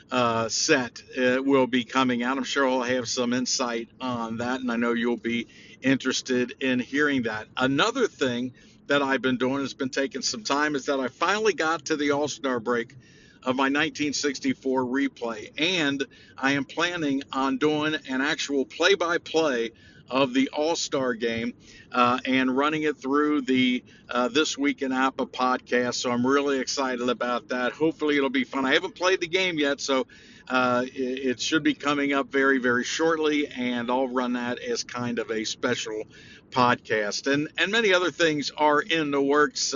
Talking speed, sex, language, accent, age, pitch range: 180 wpm, male, English, American, 50-69, 125-150 Hz